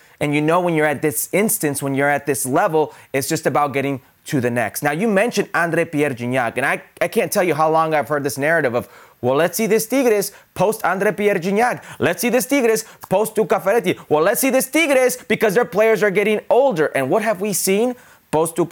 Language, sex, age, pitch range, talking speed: English, male, 30-49, 155-230 Hz, 230 wpm